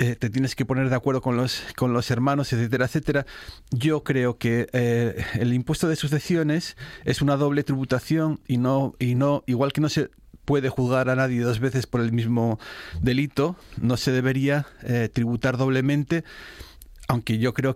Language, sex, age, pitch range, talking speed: Spanish, male, 40-59, 115-135 Hz, 175 wpm